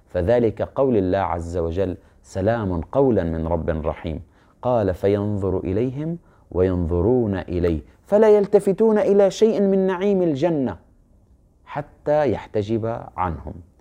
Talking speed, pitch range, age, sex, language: 110 wpm, 90-150 Hz, 30-49, male, Arabic